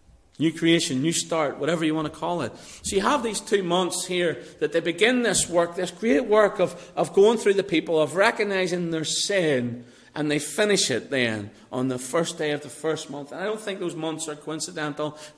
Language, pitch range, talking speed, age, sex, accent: English, 145-200 Hz, 220 wpm, 40-59, male, British